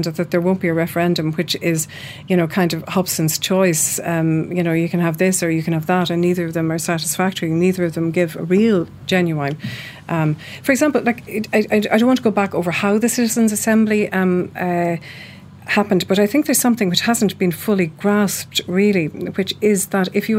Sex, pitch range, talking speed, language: female, 170-205 Hz, 220 wpm, English